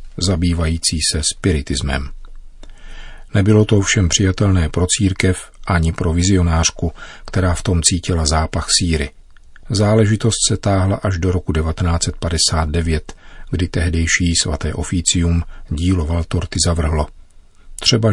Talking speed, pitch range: 110 wpm, 80-95 Hz